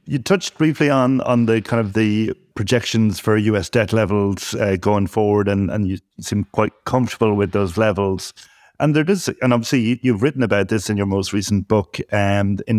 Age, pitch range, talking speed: 30-49, 100-115 Hz, 200 wpm